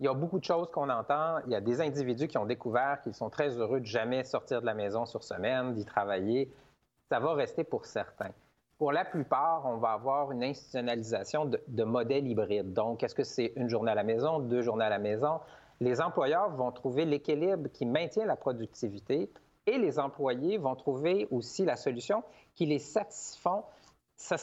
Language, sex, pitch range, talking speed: French, male, 125-155 Hz, 205 wpm